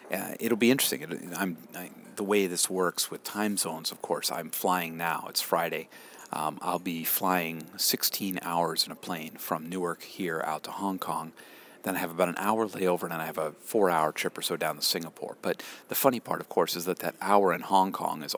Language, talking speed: English, 230 wpm